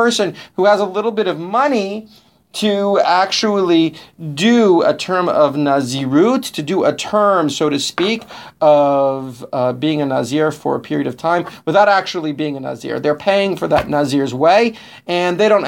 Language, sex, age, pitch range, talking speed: English, male, 40-59, 140-190 Hz, 170 wpm